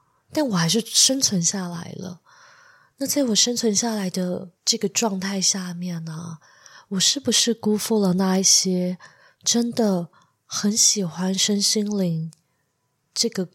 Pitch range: 175-225 Hz